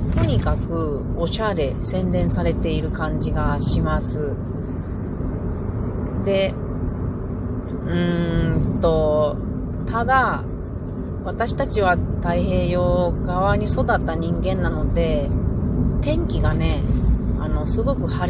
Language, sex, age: Japanese, female, 30-49